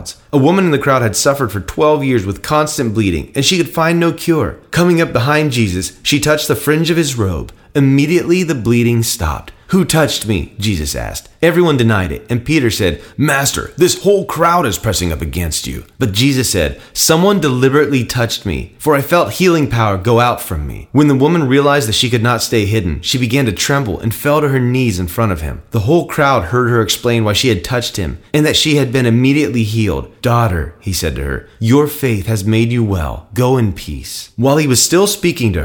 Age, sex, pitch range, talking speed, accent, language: 30-49, male, 100-145 Hz, 220 wpm, American, English